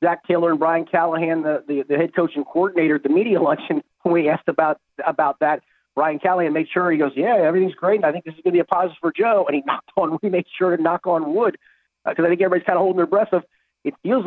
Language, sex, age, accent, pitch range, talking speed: English, male, 40-59, American, 135-175 Hz, 275 wpm